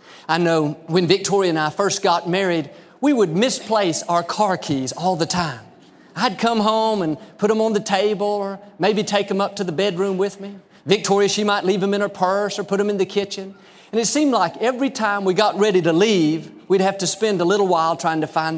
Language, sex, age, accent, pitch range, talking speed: English, male, 40-59, American, 170-215 Hz, 235 wpm